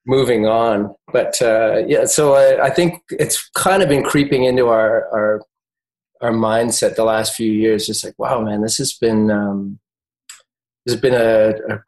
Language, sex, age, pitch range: English, male, 30-49, 110-140 Hz